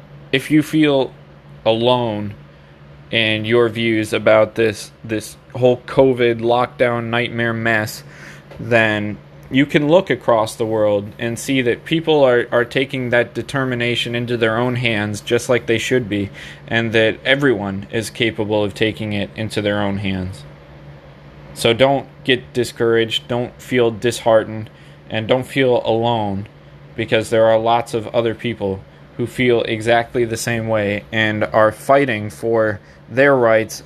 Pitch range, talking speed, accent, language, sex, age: 105-125 Hz, 145 wpm, American, English, male, 20-39